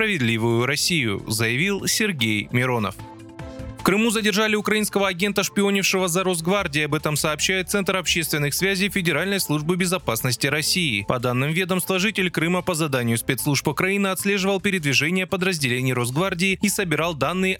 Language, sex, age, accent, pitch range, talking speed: Russian, male, 20-39, native, 135-195 Hz, 135 wpm